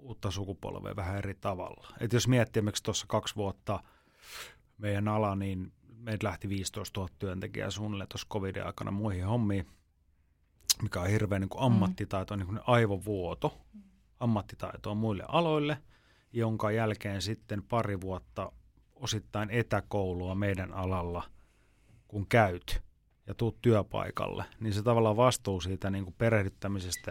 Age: 30-49